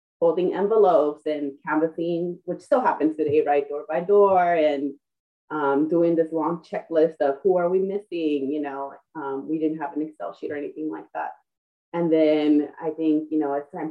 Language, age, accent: English, 20-39, American